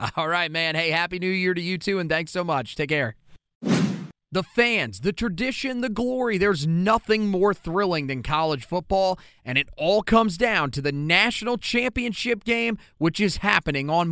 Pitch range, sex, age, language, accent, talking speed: 170-230 Hz, male, 30-49, English, American, 185 wpm